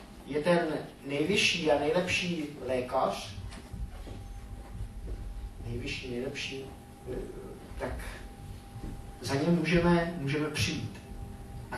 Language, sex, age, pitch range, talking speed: Czech, male, 30-49, 135-180 Hz, 75 wpm